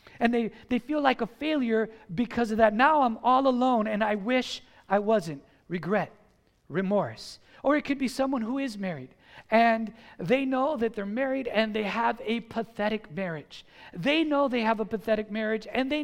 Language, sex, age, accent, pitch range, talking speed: English, male, 50-69, American, 210-255 Hz, 185 wpm